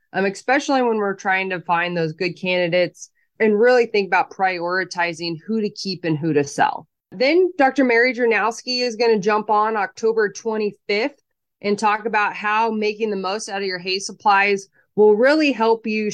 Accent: American